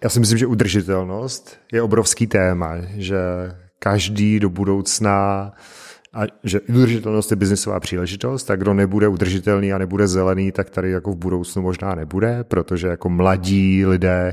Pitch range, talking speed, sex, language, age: 95-105 Hz, 150 wpm, male, Czech, 40-59